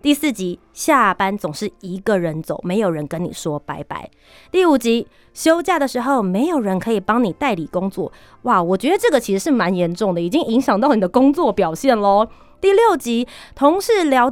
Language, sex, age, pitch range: Chinese, female, 30-49, 190-290 Hz